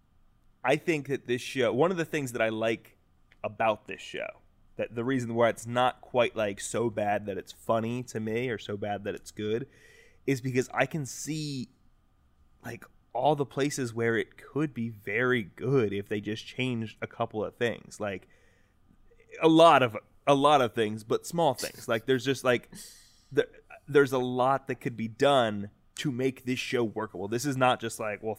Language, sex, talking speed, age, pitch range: English, male, 195 wpm, 20-39, 110-135 Hz